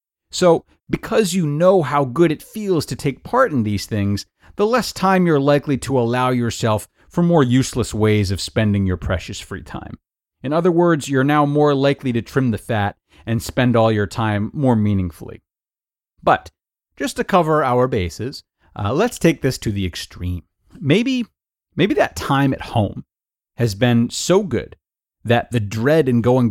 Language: English